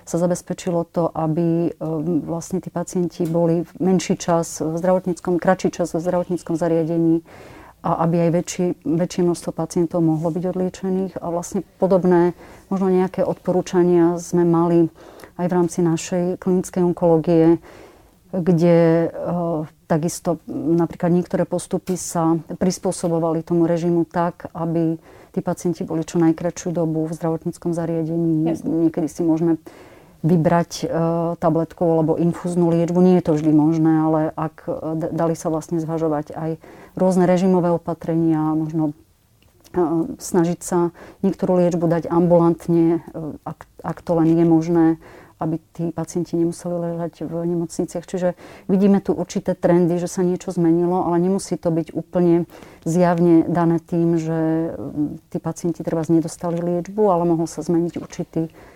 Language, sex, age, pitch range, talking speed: Slovak, female, 30-49, 165-175 Hz, 135 wpm